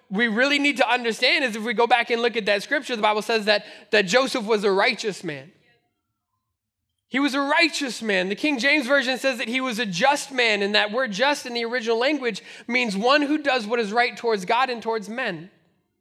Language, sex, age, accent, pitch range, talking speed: English, male, 20-39, American, 225-315 Hz, 230 wpm